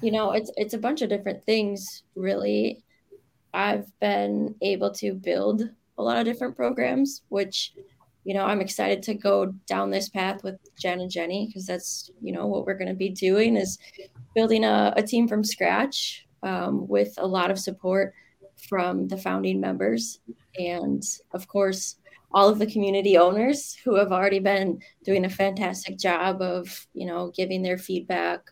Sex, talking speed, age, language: female, 175 wpm, 20-39, English